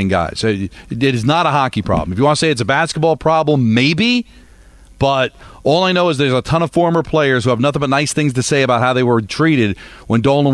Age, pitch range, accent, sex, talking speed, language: 40-59, 120-155 Hz, American, male, 245 wpm, English